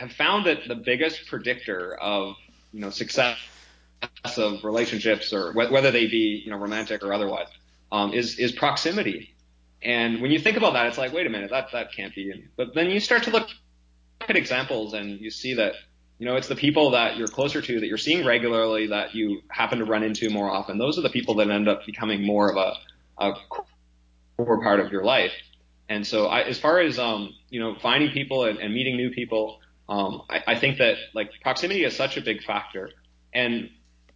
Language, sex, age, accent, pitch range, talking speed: English, male, 20-39, American, 95-115 Hz, 215 wpm